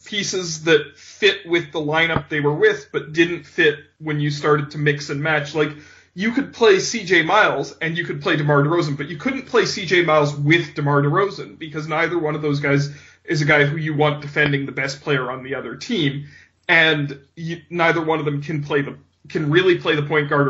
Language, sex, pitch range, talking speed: English, male, 145-175 Hz, 215 wpm